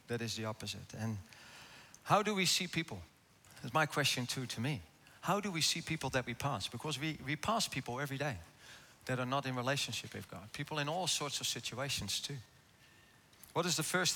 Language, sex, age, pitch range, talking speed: English, male, 40-59, 115-150 Hz, 210 wpm